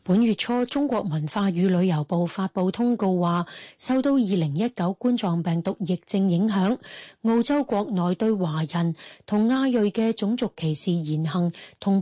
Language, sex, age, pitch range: Chinese, female, 30-49, 175-220 Hz